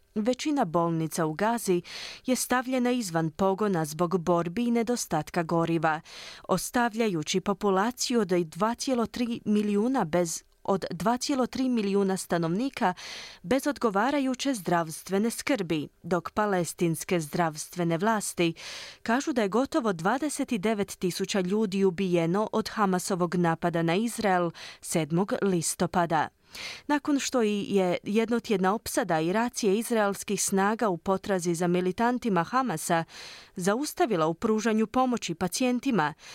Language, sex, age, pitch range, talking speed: Croatian, female, 30-49, 175-240 Hz, 105 wpm